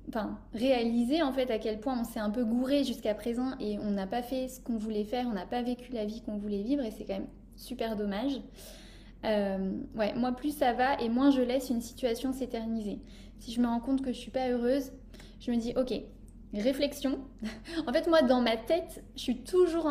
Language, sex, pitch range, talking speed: French, female, 220-265 Hz, 230 wpm